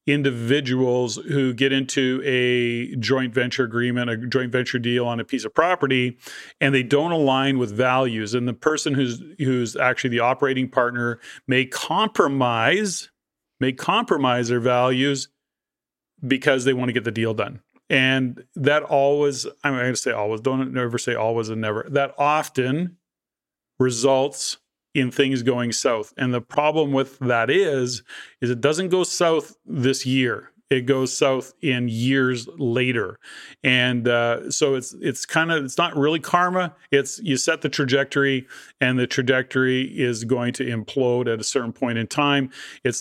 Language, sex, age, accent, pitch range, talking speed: English, male, 40-59, American, 125-140 Hz, 160 wpm